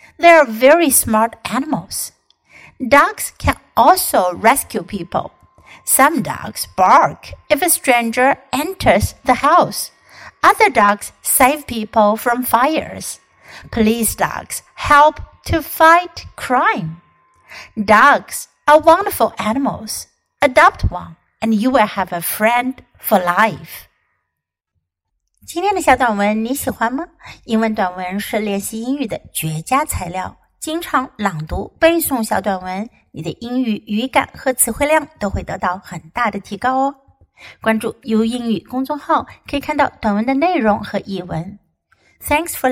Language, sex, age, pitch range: Chinese, female, 60-79, 200-285 Hz